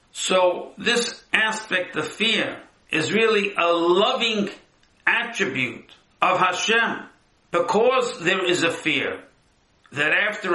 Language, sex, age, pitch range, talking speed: English, male, 60-79, 180-225 Hz, 110 wpm